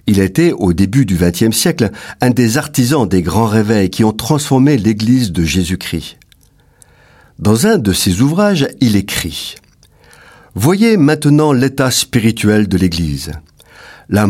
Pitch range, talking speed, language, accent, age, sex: 100-145 Hz, 140 wpm, French, French, 50-69, male